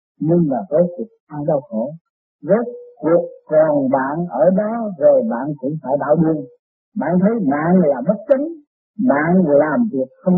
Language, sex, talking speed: Vietnamese, male, 170 wpm